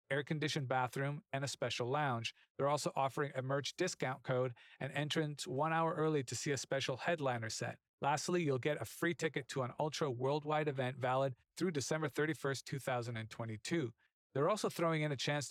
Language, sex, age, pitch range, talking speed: English, male, 40-59, 125-155 Hz, 180 wpm